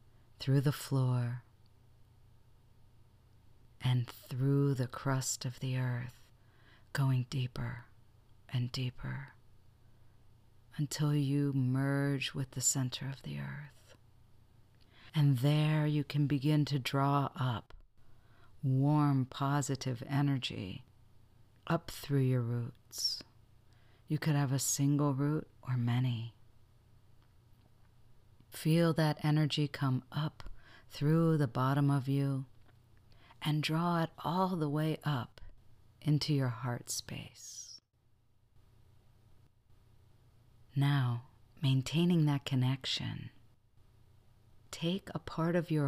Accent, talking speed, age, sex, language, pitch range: American, 100 wpm, 40-59, female, English, 115-140 Hz